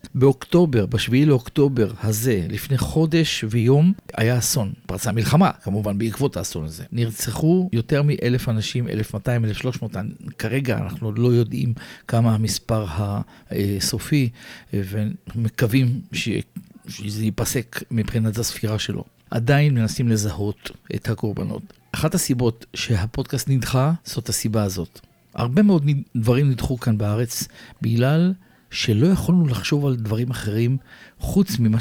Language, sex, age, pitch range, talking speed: Hebrew, male, 50-69, 110-130 Hz, 115 wpm